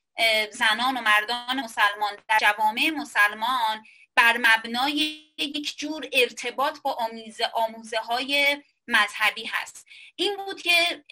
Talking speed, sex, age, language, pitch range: 110 wpm, female, 30-49, Persian, 215-270 Hz